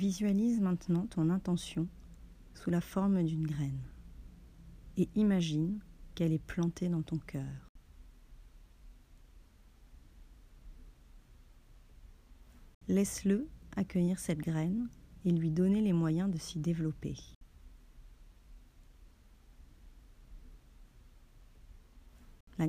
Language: French